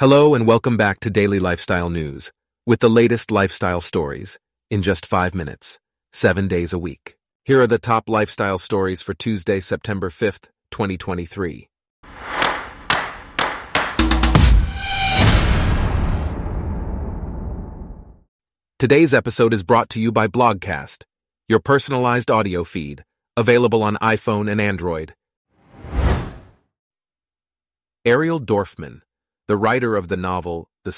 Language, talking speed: English, 110 wpm